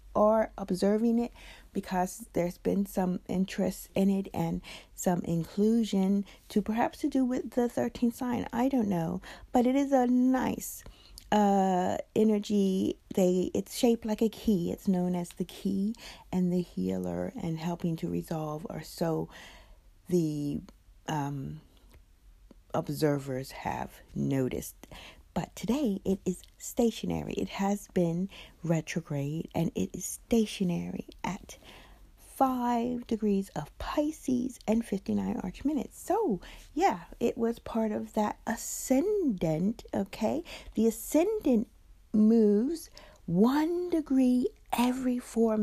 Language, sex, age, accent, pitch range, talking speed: English, female, 50-69, American, 180-245 Hz, 125 wpm